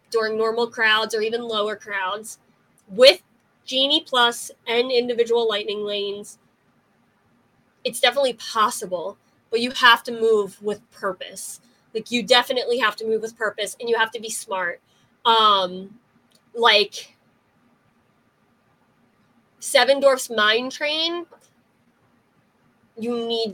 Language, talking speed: English, 115 wpm